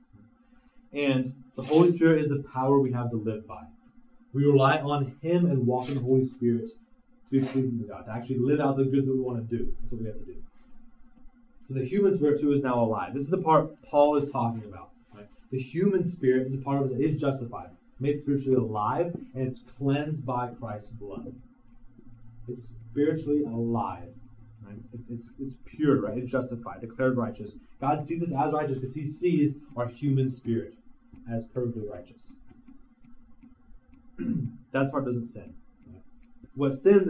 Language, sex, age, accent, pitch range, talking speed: English, male, 30-49, American, 125-170 Hz, 185 wpm